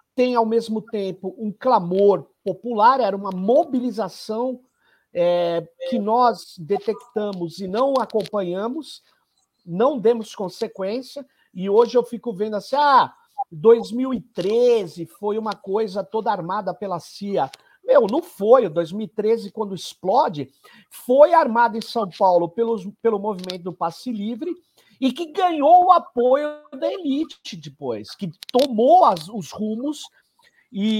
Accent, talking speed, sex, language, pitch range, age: Brazilian, 130 wpm, male, Portuguese, 200-275 Hz, 50-69